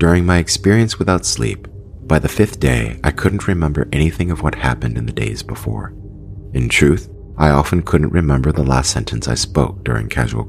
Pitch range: 80-100 Hz